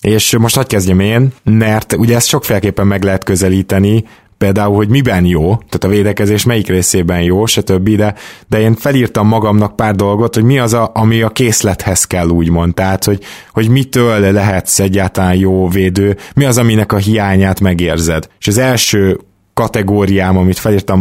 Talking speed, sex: 170 wpm, male